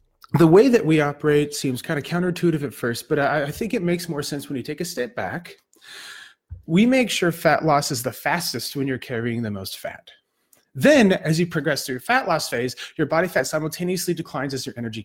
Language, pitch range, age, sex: English, 130-175 Hz, 30-49, male